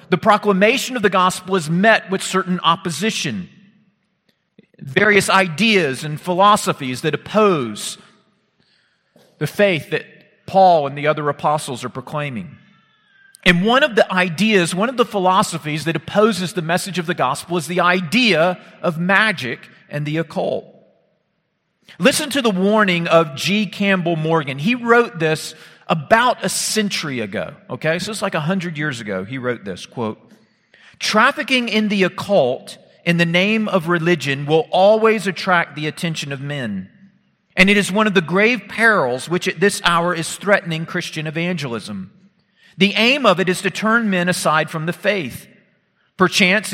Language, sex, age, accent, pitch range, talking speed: English, male, 40-59, American, 160-205 Hz, 155 wpm